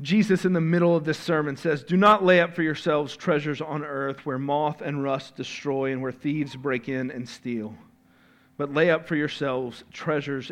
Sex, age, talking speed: male, 40-59, 200 wpm